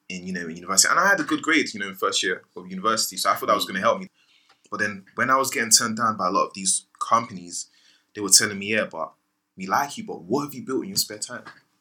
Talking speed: 300 wpm